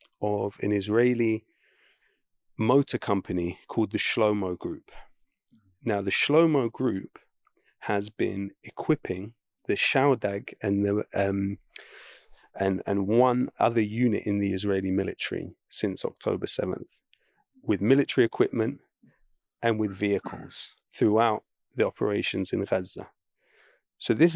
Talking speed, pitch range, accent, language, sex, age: 115 wpm, 100-120 Hz, British, English, male, 30-49